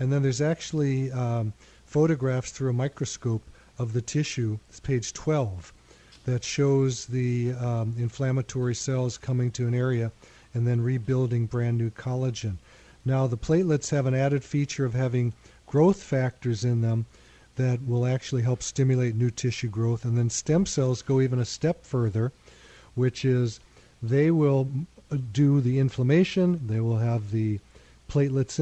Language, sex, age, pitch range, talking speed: English, male, 40-59, 120-140 Hz, 150 wpm